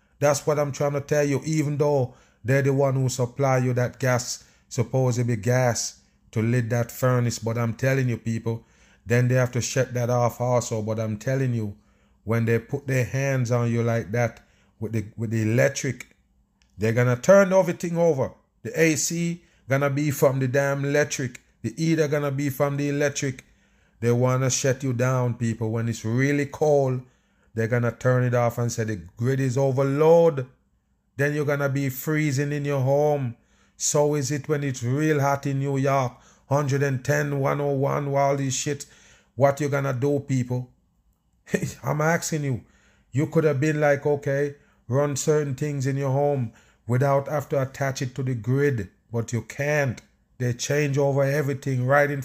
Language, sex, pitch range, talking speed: English, male, 120-145 Hz, 185 wpm